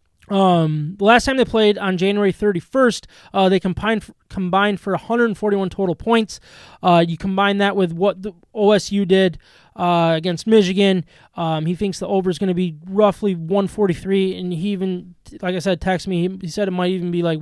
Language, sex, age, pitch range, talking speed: English, male, 20-39, 180-205 Hz, 195 wpm